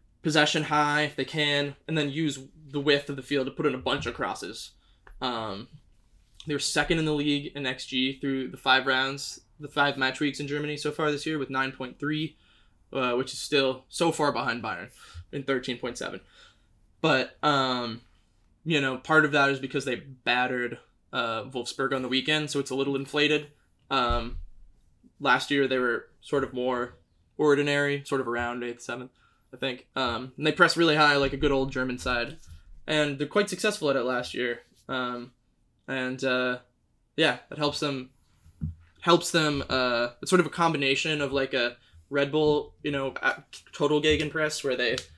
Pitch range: 125-145 Hz